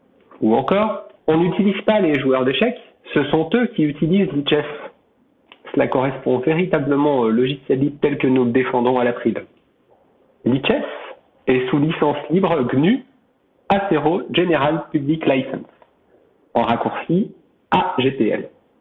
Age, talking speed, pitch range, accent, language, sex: 50-69, 130 wpm, 130-185 Hz, French, French, male